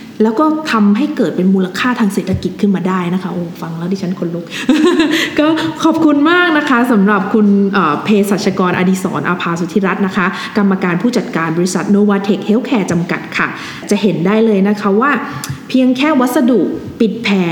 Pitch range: 190-245 Hz